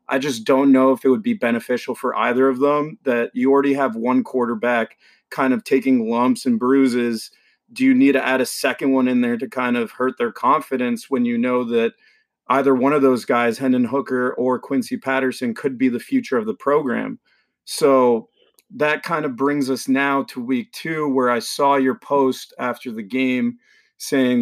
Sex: male